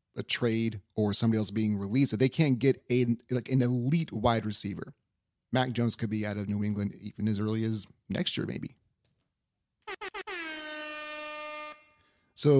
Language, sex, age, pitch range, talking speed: English, male, 30-49, 105-130 Hz, 155 wpm